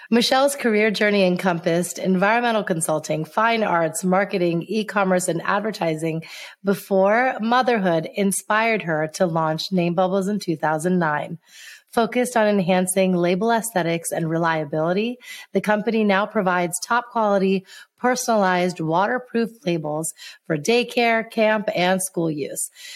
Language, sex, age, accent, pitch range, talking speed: English, female, 30-49, American, 170-215 Hz, 115 wpm